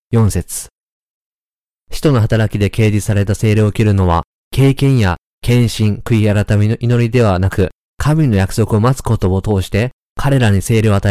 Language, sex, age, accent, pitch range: Japanese, male, 20-39, native, 100-125 Hz